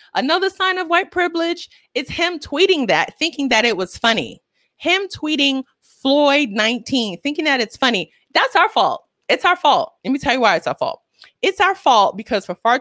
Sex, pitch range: female, 210-305 Hz